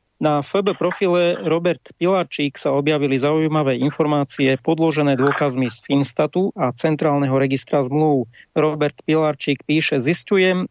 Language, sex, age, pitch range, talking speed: English, male, 40-59, 135-160 Hz, 120 wpm